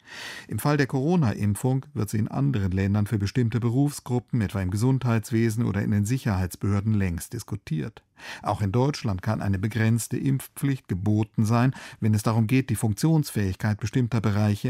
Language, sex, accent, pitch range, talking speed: German, male, German, 105-125 Hz, 155 wpm